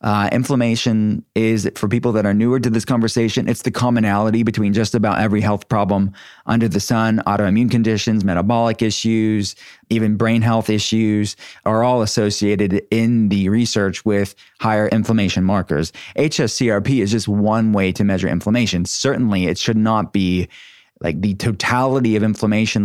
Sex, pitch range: male, 100-115 Hz